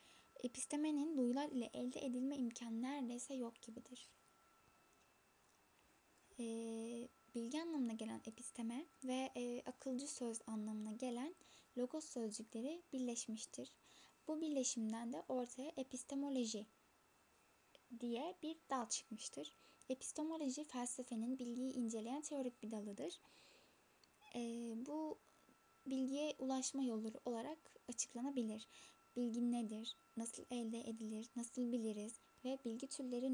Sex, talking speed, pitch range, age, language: female, 100 wpm, 230-265 Hz, 10-29, Turkish